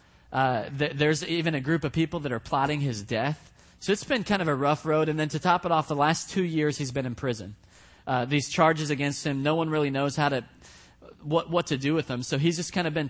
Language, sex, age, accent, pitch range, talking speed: English, male, 30-49, American, 135-160 Hz, 265 wpm